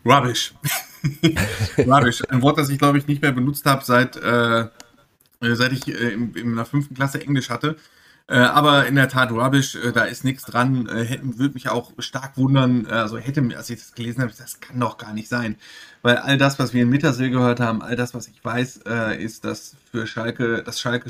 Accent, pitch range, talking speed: German, 115-135 Hz, 210 wpm